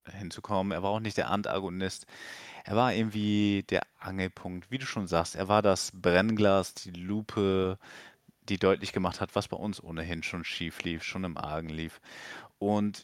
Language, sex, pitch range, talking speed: German, male, 85-100 Hz, 175 wpm